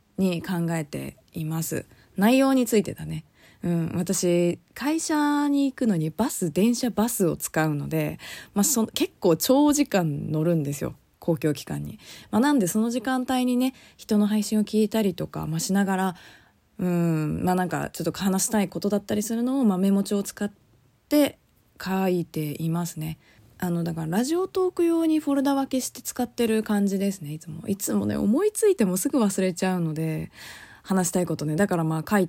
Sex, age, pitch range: female, 20-39, 165-245 Hz